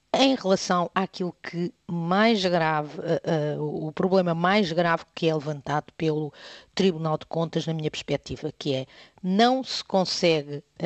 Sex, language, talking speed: female, Portuguese, 140 wpm